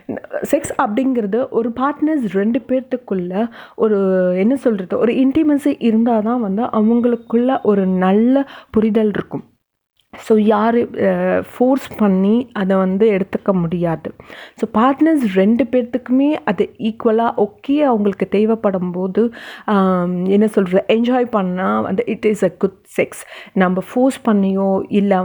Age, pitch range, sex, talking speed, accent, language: 30-49, 190-235 Hz, female, 120 wpm, native, Tamil